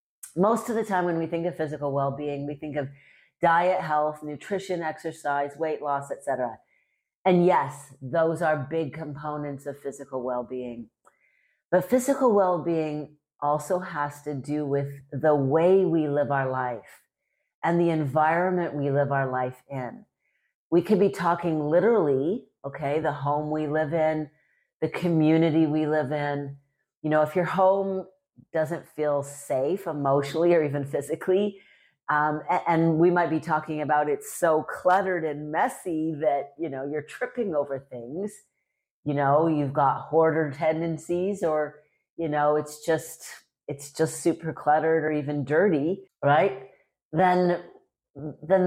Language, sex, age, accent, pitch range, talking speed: English, female, 40-59, American, 145-175 Hz, 155 wpm